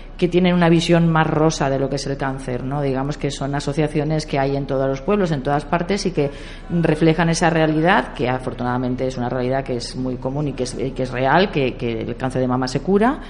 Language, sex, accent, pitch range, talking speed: Spanish, female, Spanish, 135-170 Hz, 245 wpm